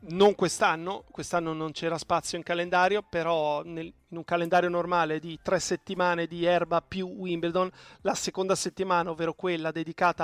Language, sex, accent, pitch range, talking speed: Italian, male, native, 165-185 Hz, 160 wpm